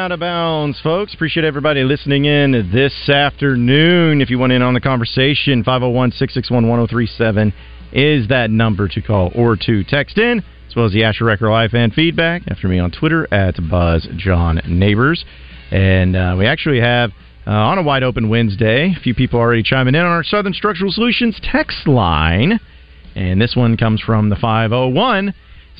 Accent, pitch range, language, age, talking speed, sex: American, 95-155 Hz, English, 40-59, 165 wpm, male